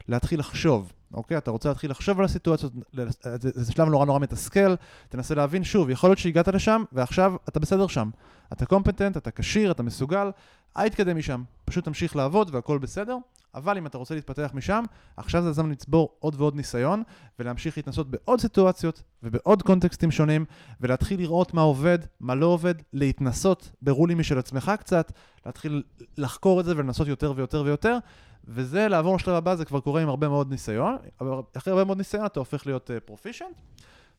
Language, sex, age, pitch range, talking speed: Hebrew, male, 20-39, 130-180 Hz, 170 wpm